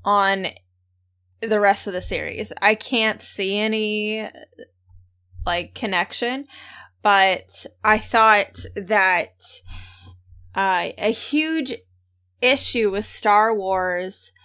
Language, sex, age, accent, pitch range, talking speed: English, female, 20-39, American, 185-225 Hz, 95 wpm